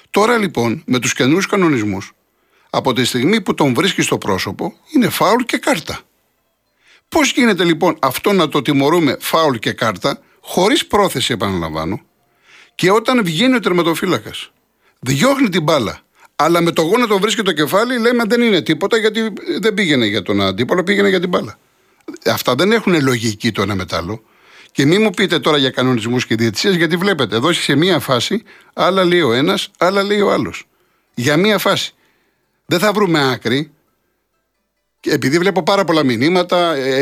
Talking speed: 170 wpm